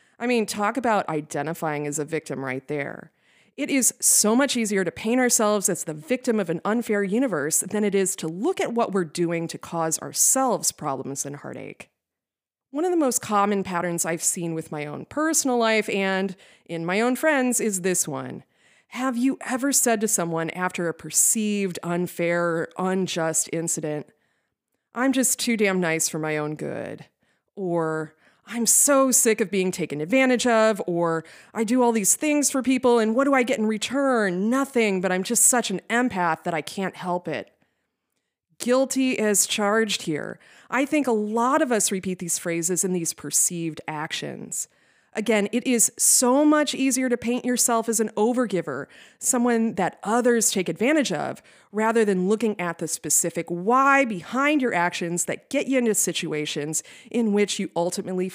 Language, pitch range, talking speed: English, 170-245 Hz, 175 wpm